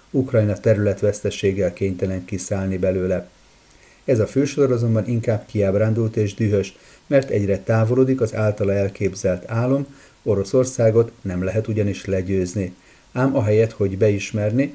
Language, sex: Hungarian, male